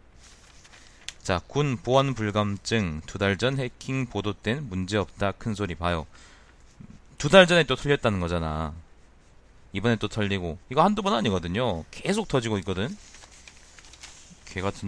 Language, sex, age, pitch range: Korean, male, 30-49, 85-115 Hz